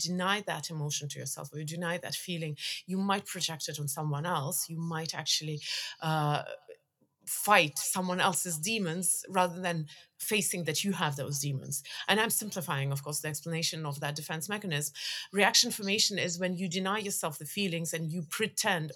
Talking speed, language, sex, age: 175 wpm, English, female, 30-49